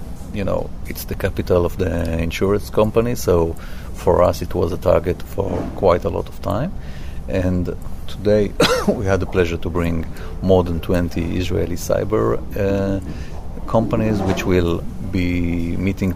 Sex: male